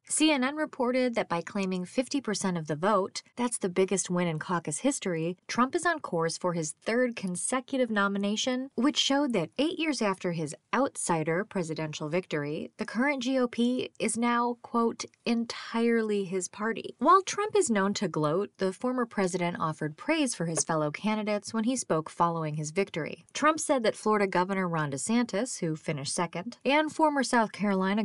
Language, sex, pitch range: English, female, 180-250 Hz